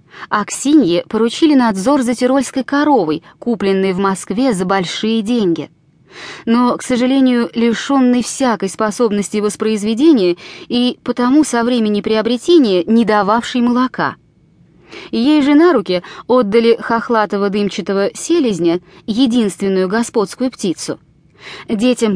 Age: 20-39